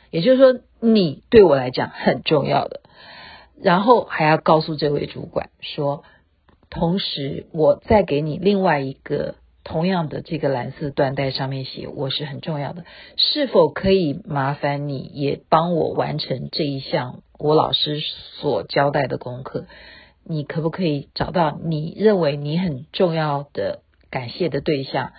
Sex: female